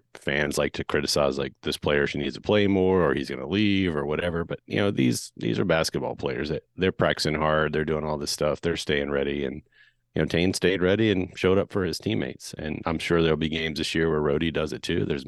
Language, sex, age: English, male, 30-49